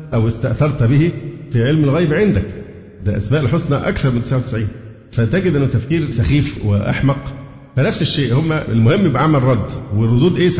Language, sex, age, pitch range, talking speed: Arabic, male, 50-69, 110-145 Hz, 145 wpm